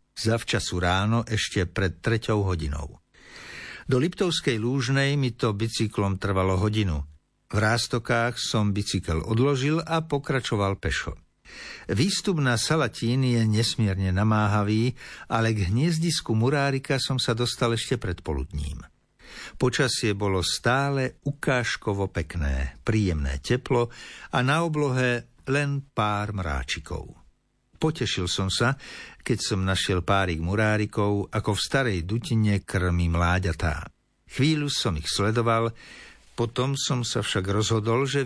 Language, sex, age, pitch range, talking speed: Slovak, male, 60-79, 95-130 Hz, 120 wpm